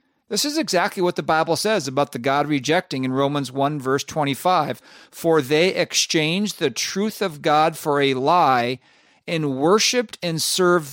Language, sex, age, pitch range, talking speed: English, male, 50-69, 140-180 Hz, 165 wpm